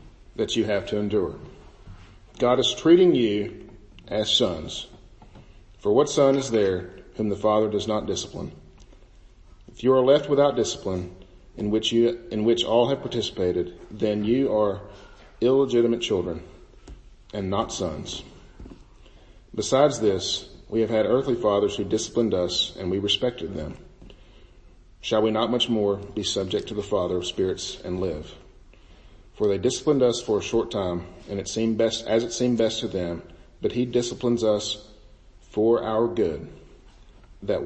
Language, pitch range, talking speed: English, 95-115 Hz, 155 wpm